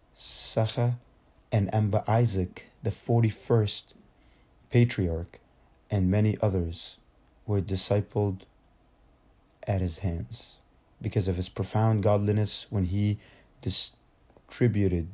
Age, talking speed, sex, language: 30-49, 90 wpm, male, English